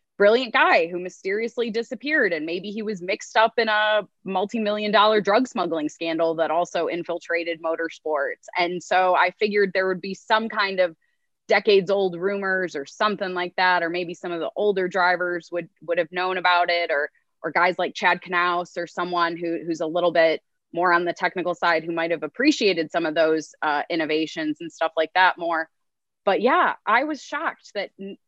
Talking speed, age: 190 wpm, 20-39